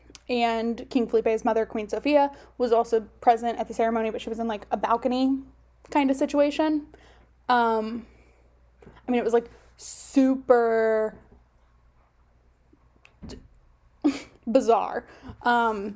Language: English